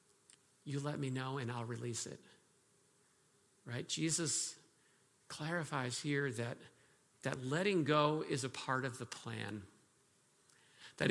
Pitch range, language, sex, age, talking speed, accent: 135-170 Hz, English, male, 50-69, 125 wpm, American